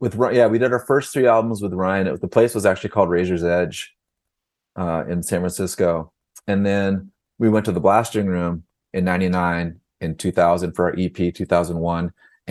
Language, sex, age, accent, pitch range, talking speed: English, male, 30-49, American, 85-100 Hz, 185 wpm